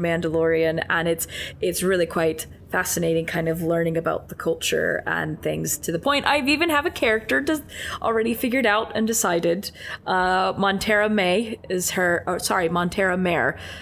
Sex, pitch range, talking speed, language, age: female, 165-225 Hz, 165 wpm, English, 20-39